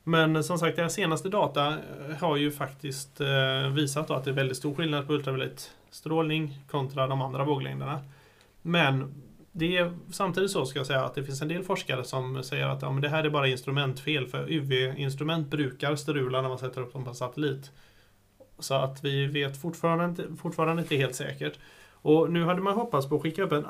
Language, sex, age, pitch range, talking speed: Swedish, male, 30-49, 135-160 Hz, 205 wpm